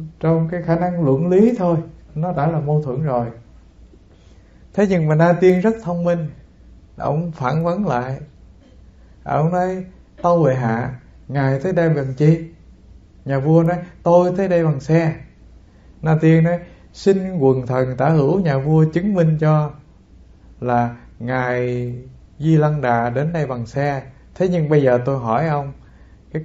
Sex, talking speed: male, 165 wpm